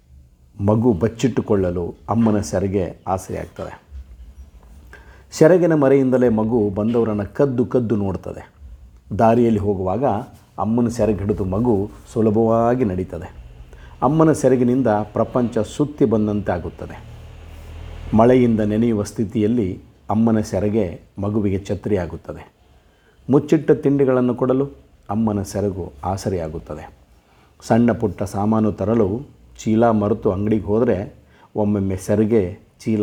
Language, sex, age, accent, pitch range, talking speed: Kannada, male, 50-69, native, 95-115 Hz, 85 wpm